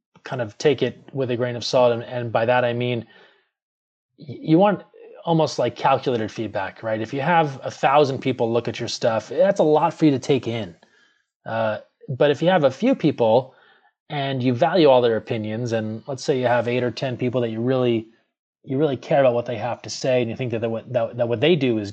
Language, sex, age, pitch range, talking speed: English, male, 20-39, 115-145 Hz, 235 wpm